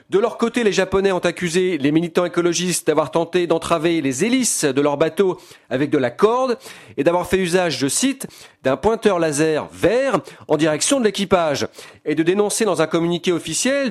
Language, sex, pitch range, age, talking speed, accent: French, male, 150-205 Hz, 40-59, 185 wpm, French